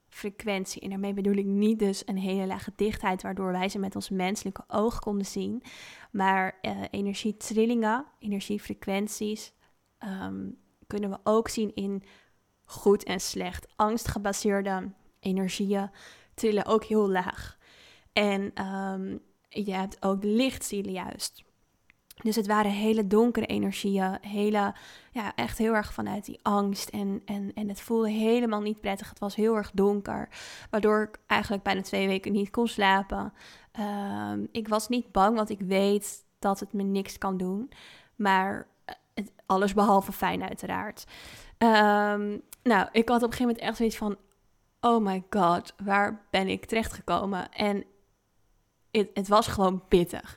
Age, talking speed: 20-39, 150 wpm